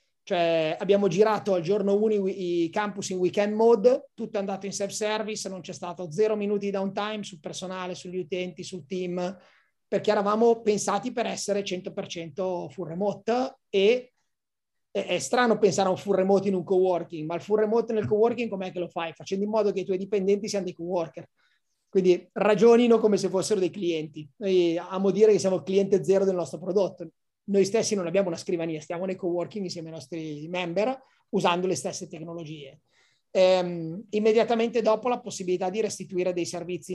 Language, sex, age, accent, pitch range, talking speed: Italian, male, 30-49, native, 175-210 Hz, 180 wpm